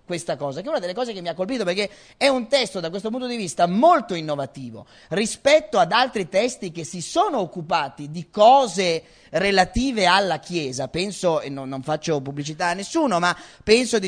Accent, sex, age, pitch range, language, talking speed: native, male, 30-49, 160-220 Hz, Italian, 190 wpm